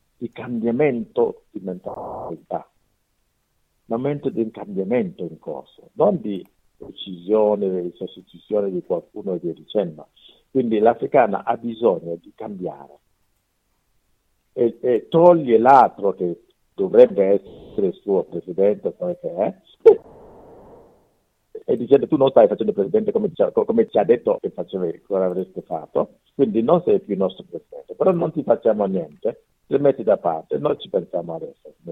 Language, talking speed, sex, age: Italian, 145 wpm, male, 50-69